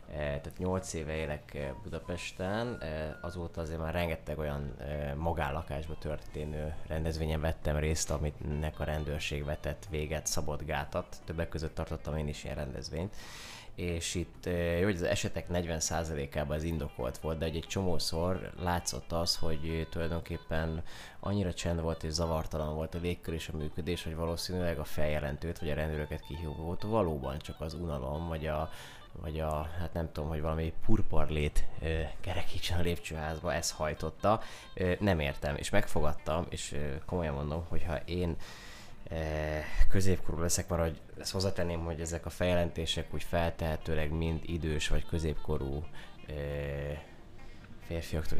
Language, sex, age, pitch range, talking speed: Hungarian, male, 20-39, 75-85 Hz, 135 wpm